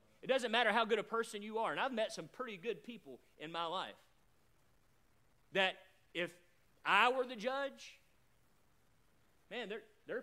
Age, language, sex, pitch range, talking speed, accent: 40-59, English, male, 170-240 Hz, 165 wpm, American